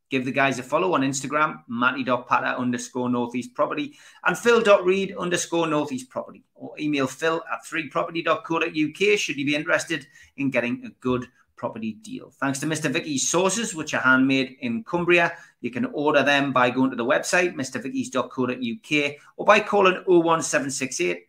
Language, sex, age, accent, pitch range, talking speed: English, male, 30-49, British, 130-180 Hz, 155 wpm